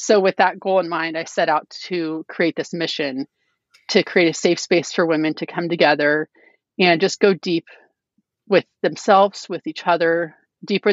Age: 30-49